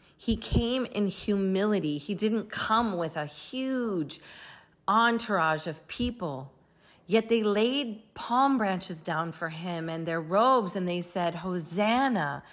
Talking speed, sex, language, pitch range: 135 wpm, female, English, 170-230 Hz